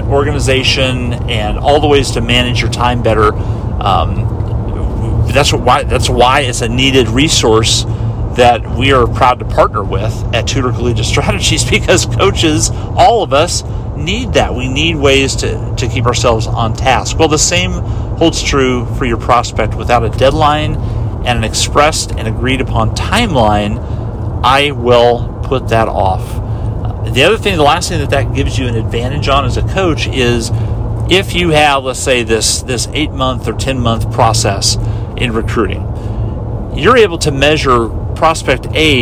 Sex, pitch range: male, 110-125 Hz